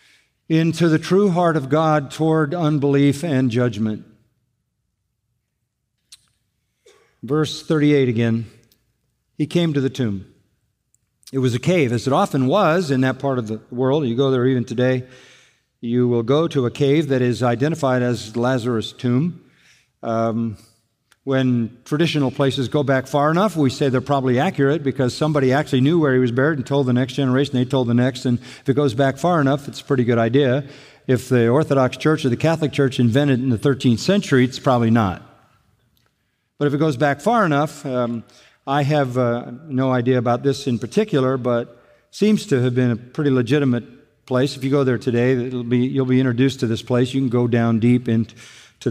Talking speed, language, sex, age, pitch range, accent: 185 wpm, English, male, 50-69, 120-145 Hz, American